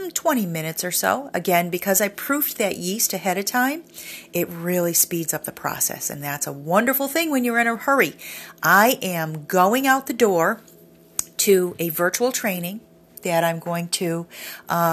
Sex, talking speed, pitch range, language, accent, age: female, 175 wpm, 160-195 Hz, English, American, 40-59